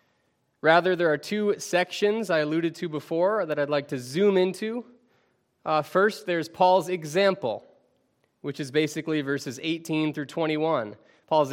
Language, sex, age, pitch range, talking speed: English, male, 20-39, 135-180 Hz, 145 wpm